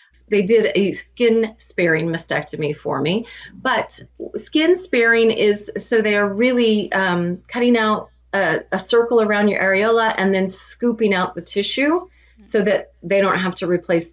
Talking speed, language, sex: 160 wpm, English, female